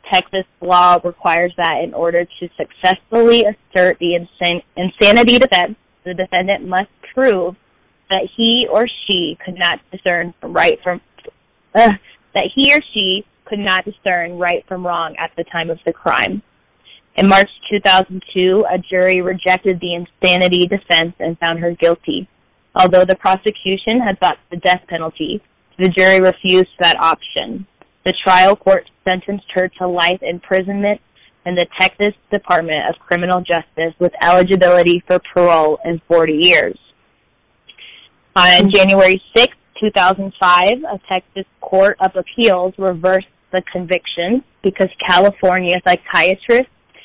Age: 20-39